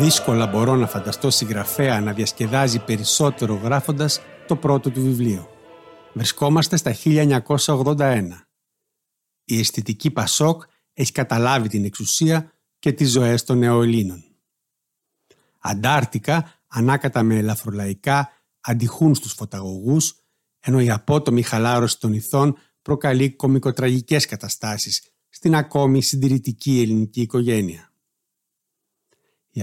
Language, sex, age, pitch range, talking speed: Greek, male, 60-79, 115-140 Hz, 100 wpm